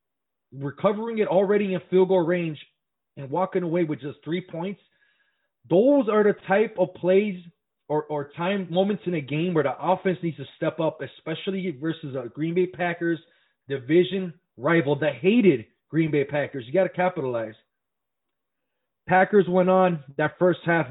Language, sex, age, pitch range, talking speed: English, male, 30-49, 145-185 Hz, 165 wpm